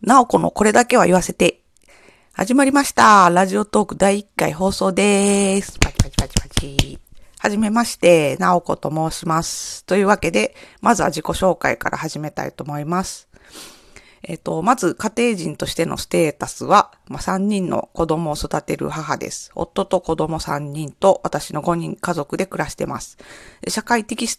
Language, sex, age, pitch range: Japanese, female, 40-59, 165-200 Hz